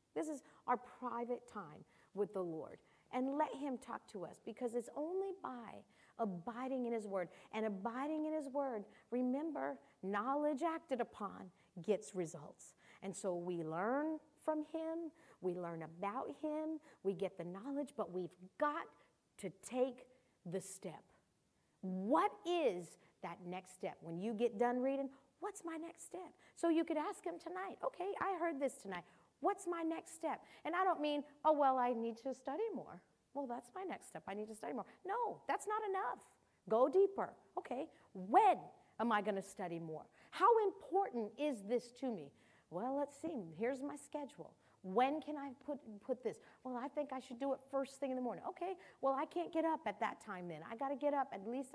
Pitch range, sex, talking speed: 205-295 Hz, female, 190 wpm